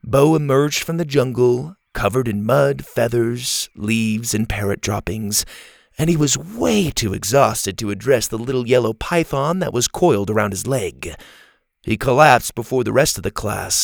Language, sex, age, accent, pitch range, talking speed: English, male, 30-49, American, 110-150 Hz, 170 wpm